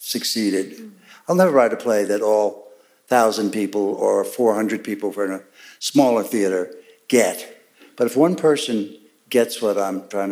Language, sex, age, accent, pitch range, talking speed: English, male, 60-79, American, 105-130 Hz, 155 wpm